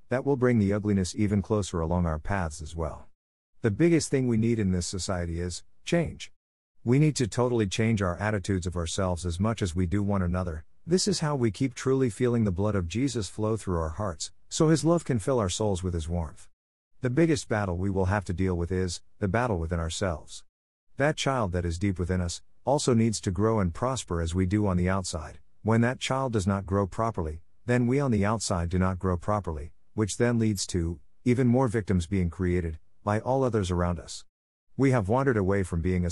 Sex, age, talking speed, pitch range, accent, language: male, 50-69, 220 wpm, 90-120 Hz, American, English